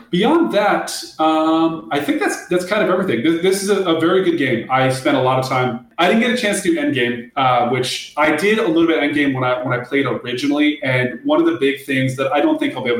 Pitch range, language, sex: 120-165 Hz, English, male